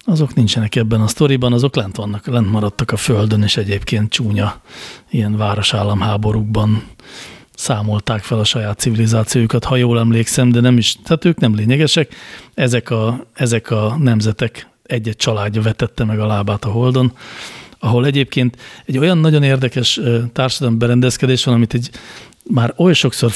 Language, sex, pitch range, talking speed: Hungarian, male, 110-130 Hz, 155 wpm